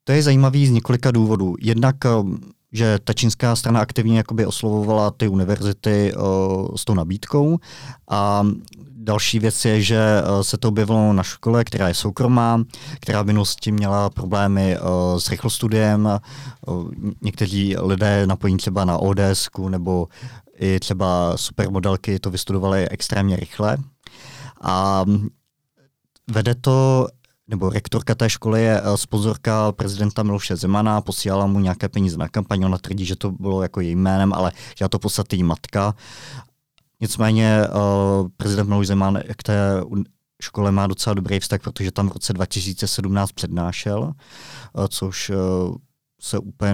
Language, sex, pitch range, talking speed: Czech, male, 95-115 Hz, 130 wpm